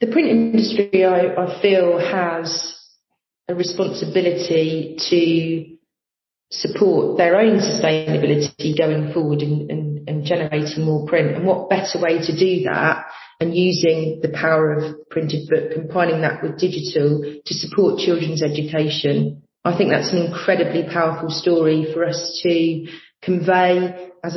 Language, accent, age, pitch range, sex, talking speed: English, British, 40-59, 160-190 Hz, female, 135 wpm